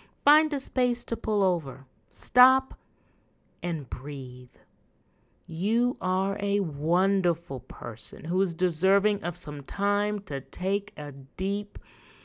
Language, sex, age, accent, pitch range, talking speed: English, female, 40-59, American, 155-230 Hz, 120 wpm